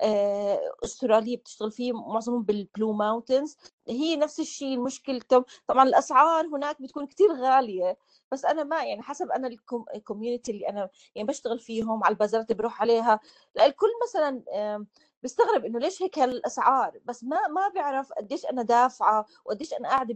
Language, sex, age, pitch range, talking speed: Arabic, female, 30-49, 225-295 Hz, 150 wpm